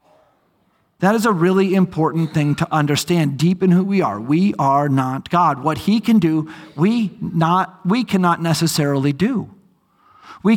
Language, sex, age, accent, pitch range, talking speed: English, male, 40-59, American, 165-215 Hz, 155 wpm